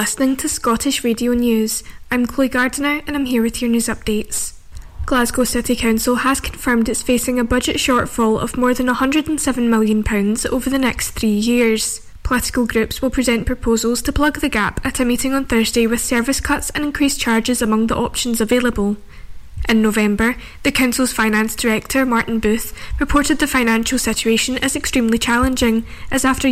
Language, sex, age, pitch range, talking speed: English, female, 10-29, 225-260 Hz, 170 wpm